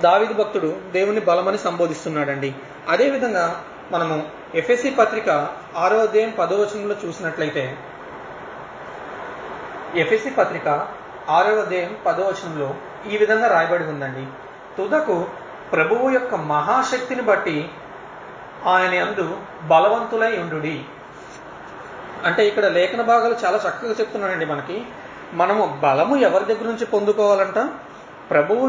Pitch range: 180-235 Hz